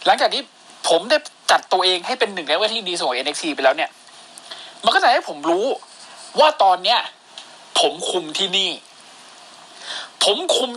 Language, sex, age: Thai, male, 20-39